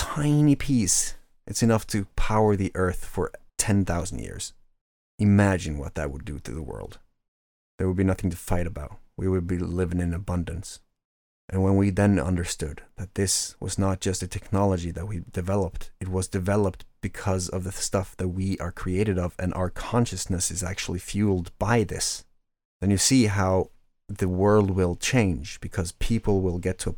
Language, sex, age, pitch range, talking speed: English, male, 30-49, 90-100 Hz, 180 wpm